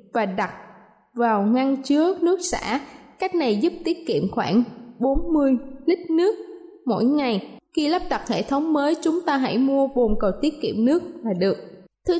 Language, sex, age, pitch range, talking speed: Vietnamese, female, 20-39, 235-325 Hz, 175 wpm